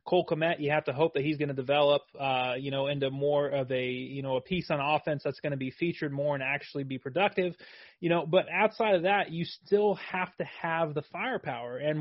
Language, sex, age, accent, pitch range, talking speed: English, male, 30-49, American, 140-175 Hz, 240 wpm